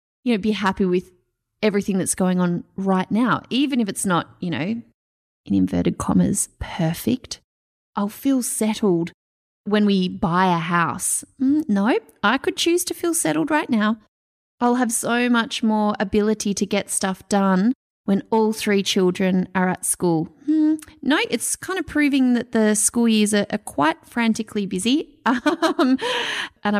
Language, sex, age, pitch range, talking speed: English, female, 30-49, 190-250 Hz, 160 wpm